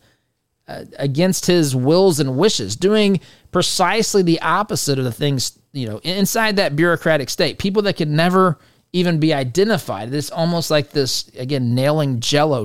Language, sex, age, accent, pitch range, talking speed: English, male, 30-49, American, 125-155 Hz, 150 wpm